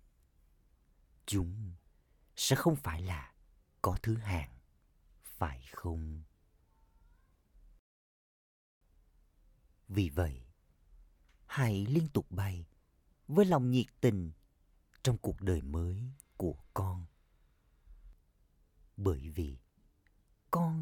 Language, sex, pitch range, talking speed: Vietnamese, male, 75-105 Hz, 85 wpm